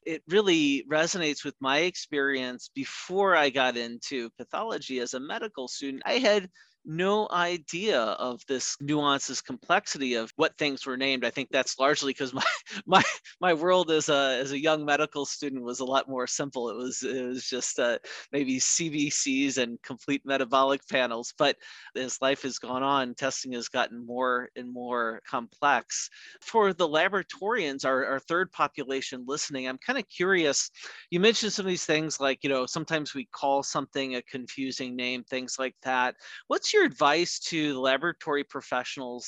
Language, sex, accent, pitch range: English, male, American, 125-155 Hz